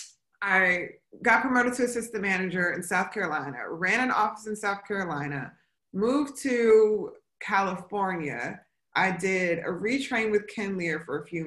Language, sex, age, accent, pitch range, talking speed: English, female, 20-39, American, 165-200 Hz, 145 wpm